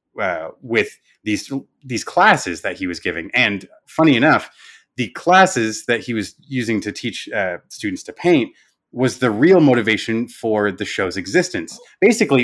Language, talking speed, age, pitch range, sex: English, 160 wpm, 30-49, 105-150 Hz, male